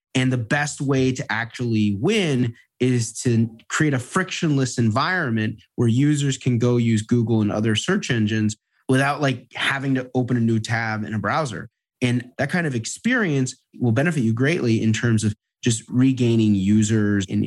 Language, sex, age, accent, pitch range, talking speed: English, male, 30-49, American, 110-145 Hz, 170 wpm